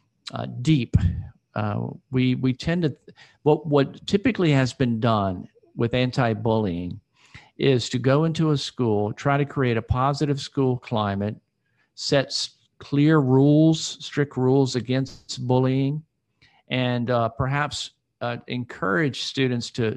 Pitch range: 110-140 Hz